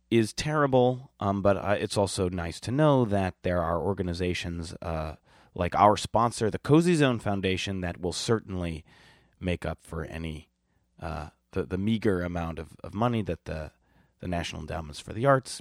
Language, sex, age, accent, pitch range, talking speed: English, male, 30-49, American, 85-105 Hz, 175 wpm